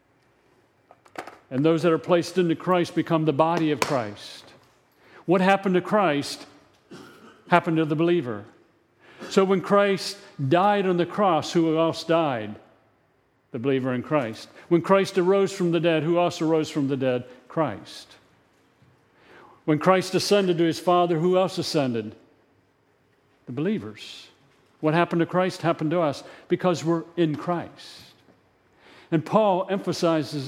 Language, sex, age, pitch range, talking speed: English, male, 50-69, 145-175 Hz, 145 wpm